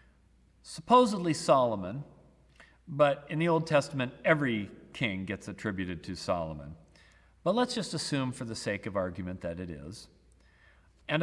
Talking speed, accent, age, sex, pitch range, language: 140 wpm, American, 40-59, male, 110-160 Hz, English